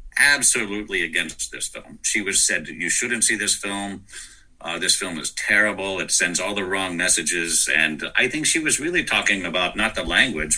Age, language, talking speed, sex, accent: 50-69, Polish, 195 wpm, male, American